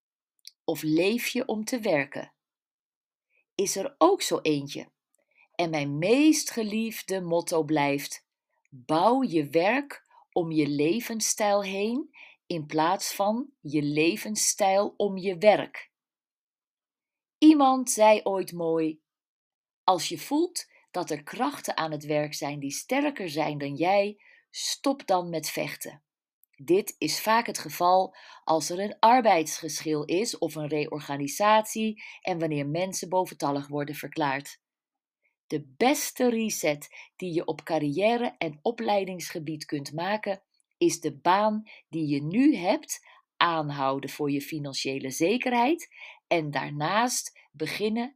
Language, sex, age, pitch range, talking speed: Dutch, female, 40-59, 155-225 Hz, 125 wpm